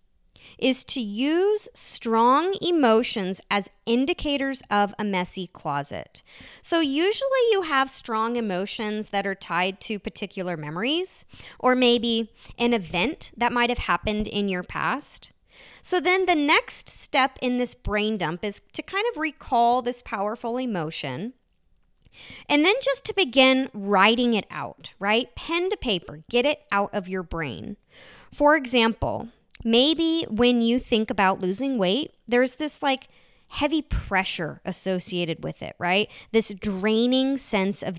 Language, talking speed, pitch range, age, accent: English, 145 wpm, 200-270 Hz, 30-49, American